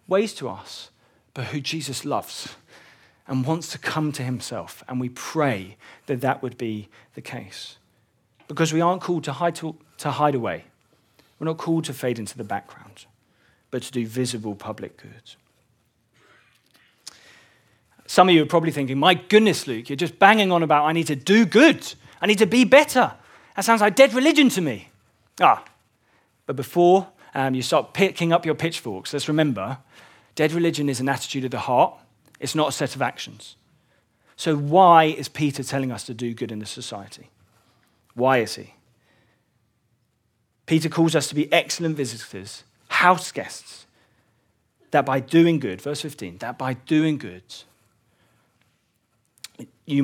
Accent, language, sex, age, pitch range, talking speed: British, English, male, 40-59, 115-160 Hz, 165 wpm